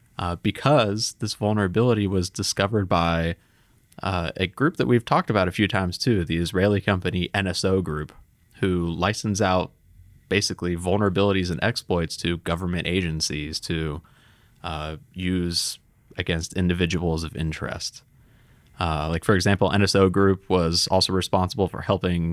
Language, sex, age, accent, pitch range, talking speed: English, male, 20-39, American, 85-105 Hz, 135 wpm